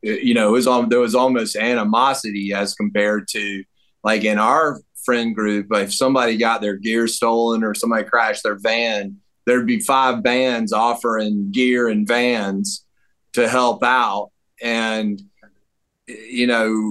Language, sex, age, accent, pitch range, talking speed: English, male, 30-49, American, 110-130 Hz, 140 wpm